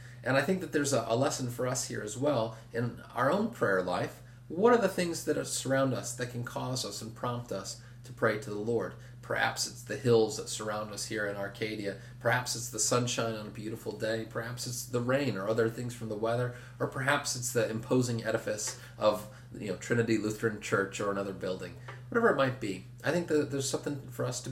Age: 30-49